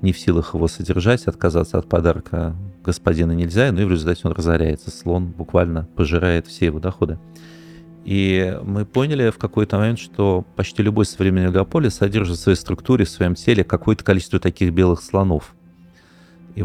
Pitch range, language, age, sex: 85-100 Hz, Russian, 30-49, male